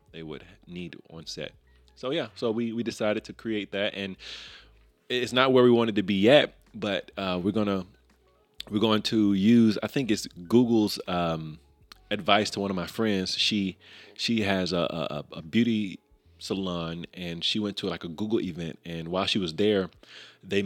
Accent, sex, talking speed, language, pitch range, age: American, male, 185 wpm, English, 85-110 Hz, 30-49